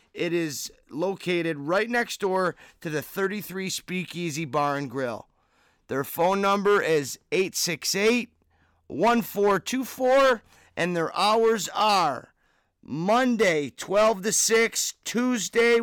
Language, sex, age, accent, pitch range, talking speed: English, male, 30-49, American, 175-215 Hz, 100 wpm